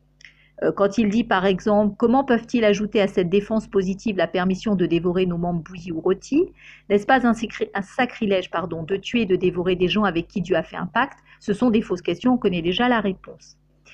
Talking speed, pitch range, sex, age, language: 230 wpm, 185-245 Hz, female, 50-69, French